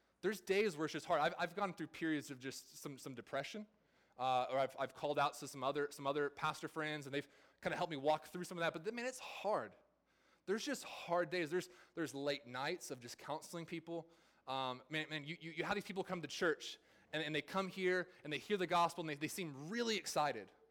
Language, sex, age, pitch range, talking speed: English, male, 20-39, 150-195 Hz, 245 wpm